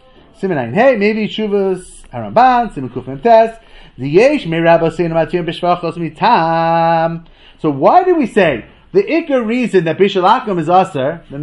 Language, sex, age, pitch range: English, male, 30-49, 185-280 Hz